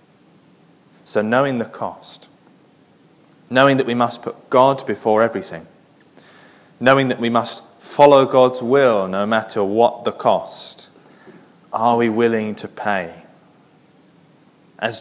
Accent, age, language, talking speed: British, 30-49, English, 120 wpm